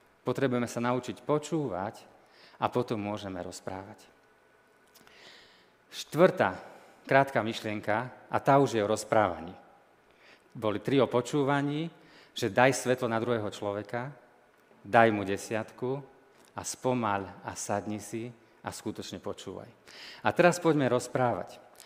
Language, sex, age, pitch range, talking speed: Slovak, male, 40-59, 115-155 Hz, 115 wpm